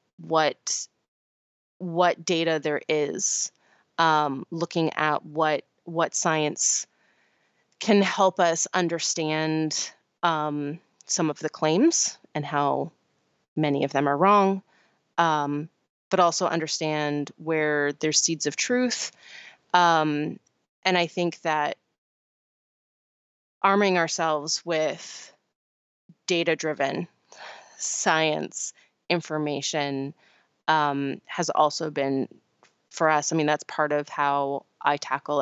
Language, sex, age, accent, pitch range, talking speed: English, female, 20-39, American, 145-165 Hz, 105 wpm